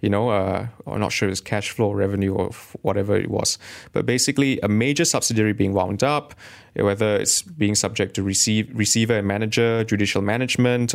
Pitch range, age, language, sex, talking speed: 100-125 Hz, 30-49, English, male, 190 wpm